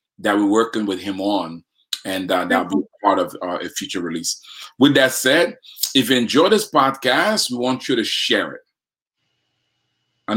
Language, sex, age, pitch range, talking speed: English, male, 40-59, 90-110 Hz, 185 wpm